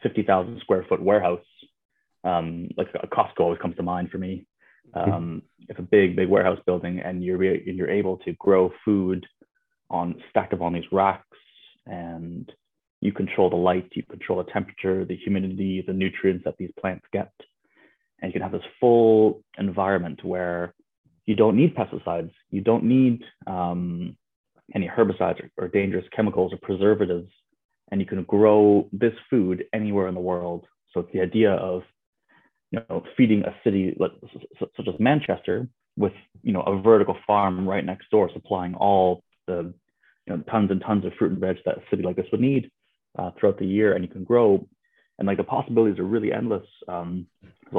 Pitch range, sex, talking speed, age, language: 90-105 Hz, male, 185 wpm, 20-39, English